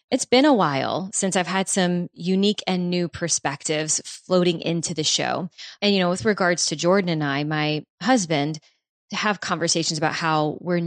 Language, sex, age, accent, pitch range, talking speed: English, female, 20-39, American, 170-205 Hz, 180 wpm